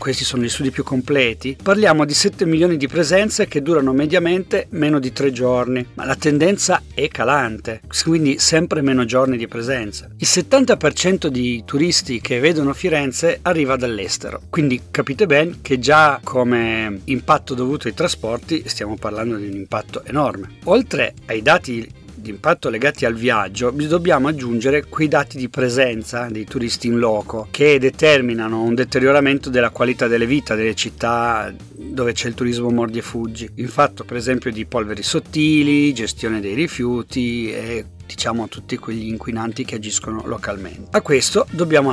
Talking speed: 160 wpm